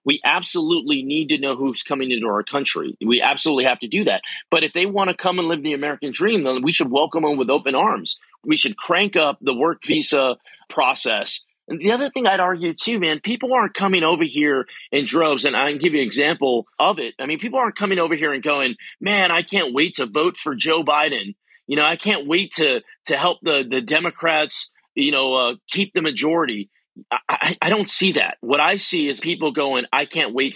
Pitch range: 135-195 Hz